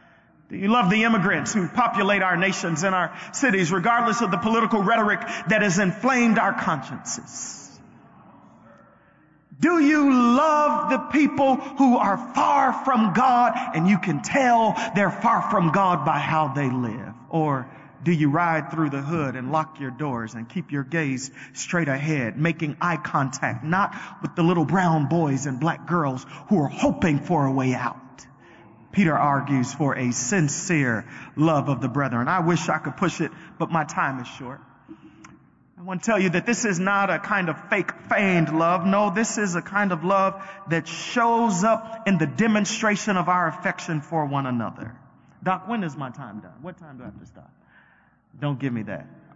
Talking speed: 185 wpm